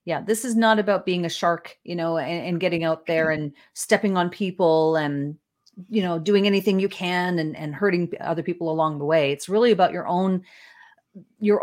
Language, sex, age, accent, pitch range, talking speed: English, female, 40-59, American, 160-200 Hz, 205 wpm